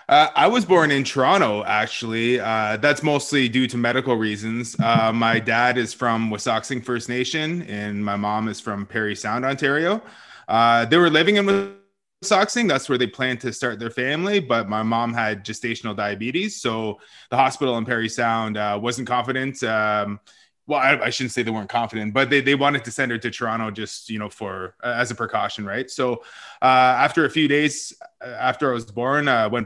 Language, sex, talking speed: English, male, 200 wpm